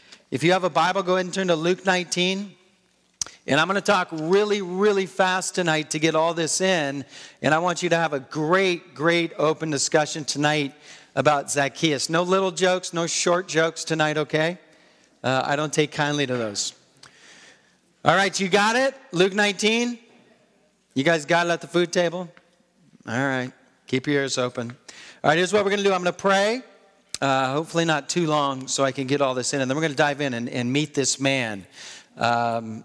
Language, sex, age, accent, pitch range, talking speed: English, male, 40-59, American, 135-175 Hz, 205 wpm